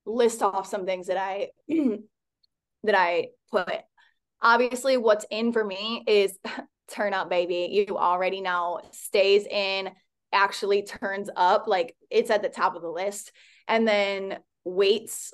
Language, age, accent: English, 20-39, American